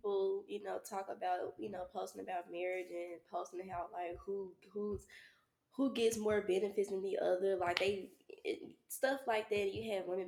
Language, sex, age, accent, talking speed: English, female, 10-29, American, 185 wpm